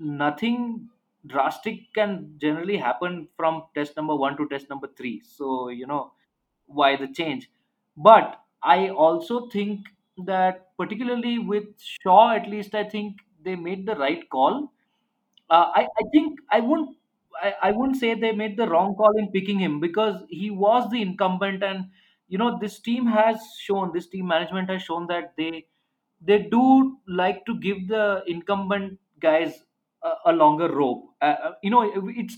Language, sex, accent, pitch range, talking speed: English, male, Indian, 175-230 Hz, 165 wpm